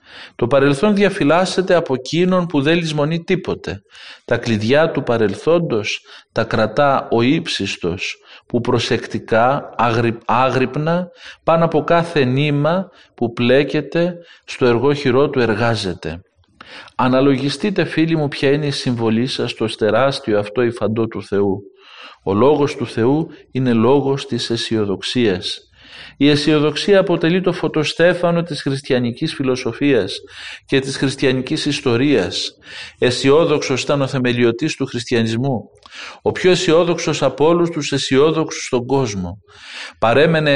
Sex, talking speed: male, 120 wpm